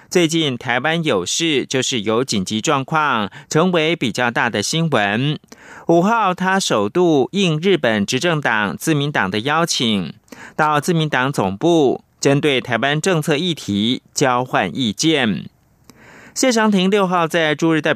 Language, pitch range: Chinese, 125-175 Hz